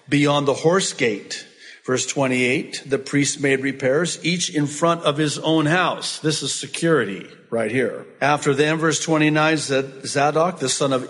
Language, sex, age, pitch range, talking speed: English, male, 50-69, 135-165 Hz, 160 wpm